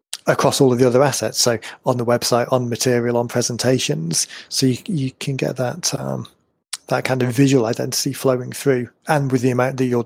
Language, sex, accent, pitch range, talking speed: English, male, British, 125-140 Hz, 205 wpm